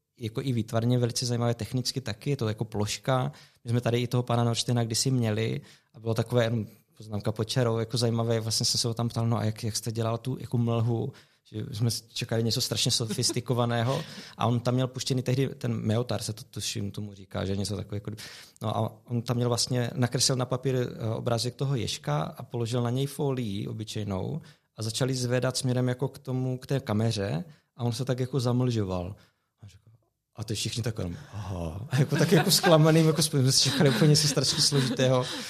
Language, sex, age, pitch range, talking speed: Czech, male, 20-39, 115-135 Hz, 200 wpm